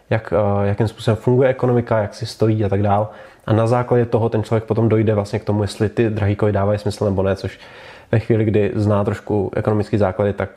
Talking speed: 220 wpm